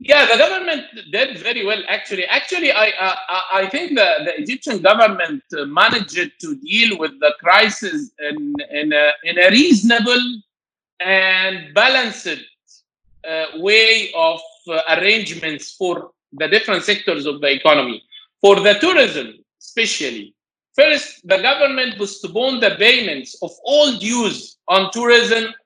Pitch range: 190-250 Hz